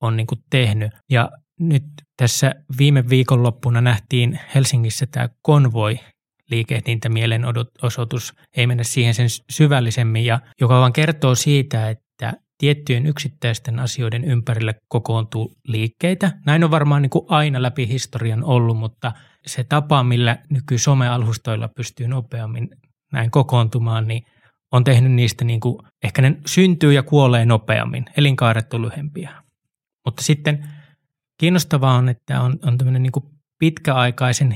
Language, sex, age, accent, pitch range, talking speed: Finnish, male, 20-39, native, 115-140 Hz, 130 wpm